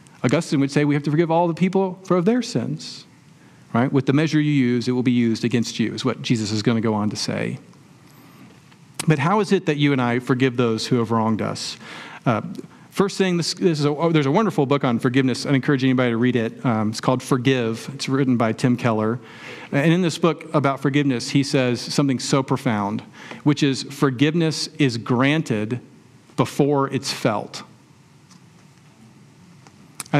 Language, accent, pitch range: English, American, 125-155 Hz